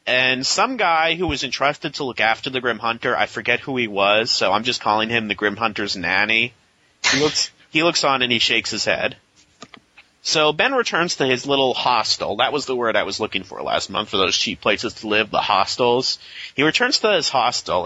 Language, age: English, 30-49